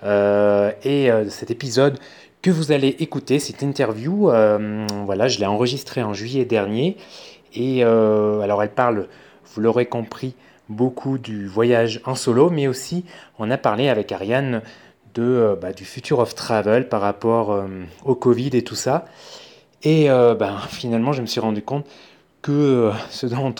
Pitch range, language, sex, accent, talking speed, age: 105-125 Hz, French, male, French, 170 wpm, 20-39